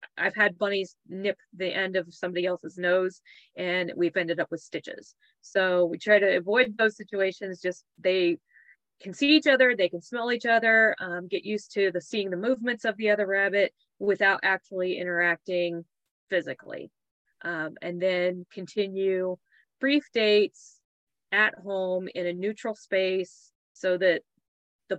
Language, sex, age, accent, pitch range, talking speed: English, female, 30-49, American, 180-210 Hz, 155 wpm